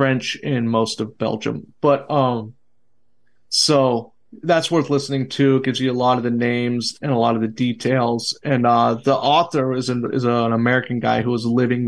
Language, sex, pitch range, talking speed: English, male, 120-135 Hz, 200 wpm